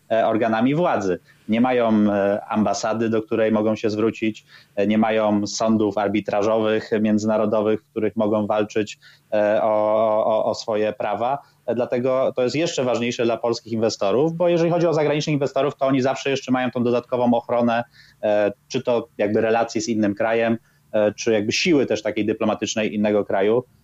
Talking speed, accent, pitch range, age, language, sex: 155 wpm, native, 105-115 Hz, 20-39, Polish, male